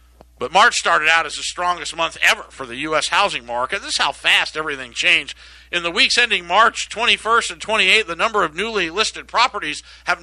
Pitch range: 140-190 Hz